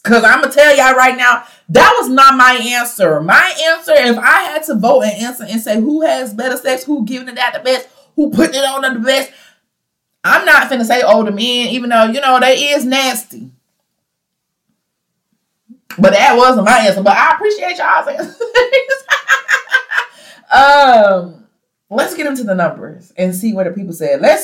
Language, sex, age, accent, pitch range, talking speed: English, female, 20-39, American, 190-280 Hz, 190 wpm